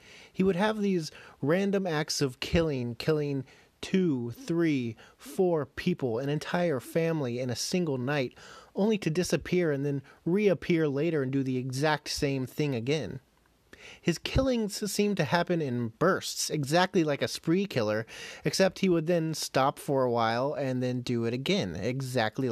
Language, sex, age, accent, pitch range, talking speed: English, male, 30-49, American, 130-175 Hz, 160 wpm